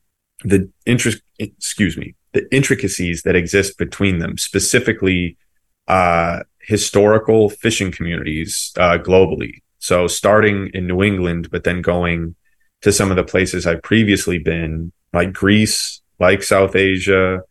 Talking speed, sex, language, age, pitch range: 130 wpm, male, English, 30-49, 90-105 Hz